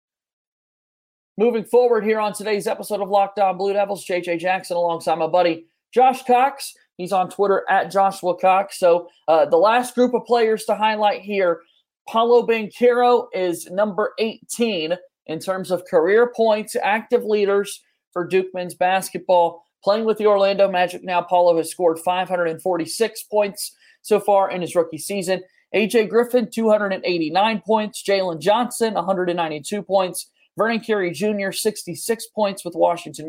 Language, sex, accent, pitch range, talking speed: English, male, American, 180-220 Hz, 145 wpm